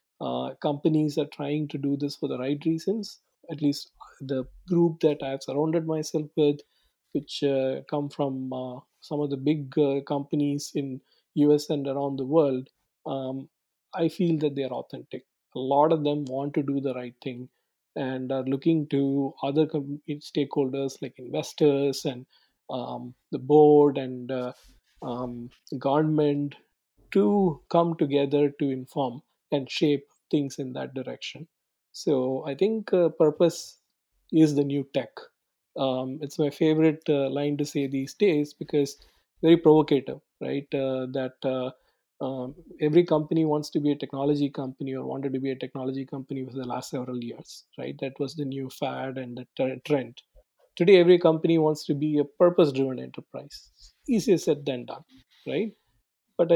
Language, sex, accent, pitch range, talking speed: English, male, Indian, 135-155 Hz, 160 wpm